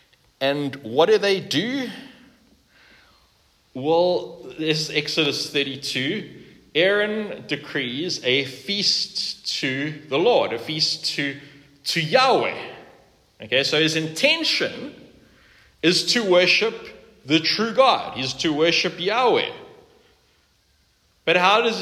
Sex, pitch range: male, 140-215 Hz